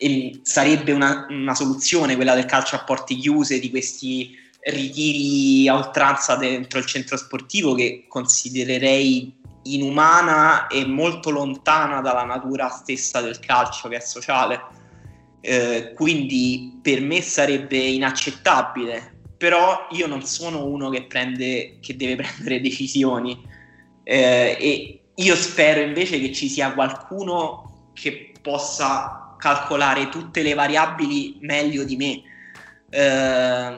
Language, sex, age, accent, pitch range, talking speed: Italian, male, 20-39, native, 130-160 Hz, 125 wpm